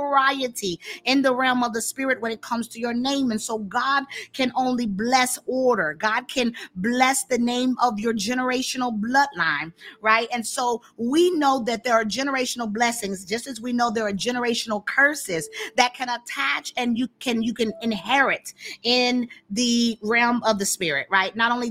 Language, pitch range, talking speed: English, 220-265 Hz, 180 wpm